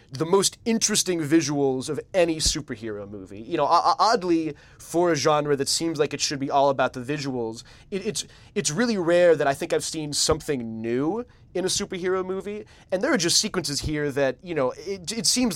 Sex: male